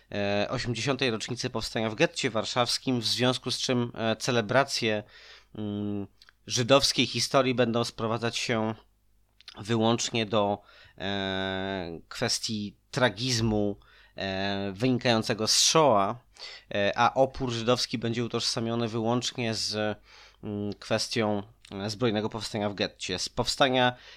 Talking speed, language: 90 wpm, Polish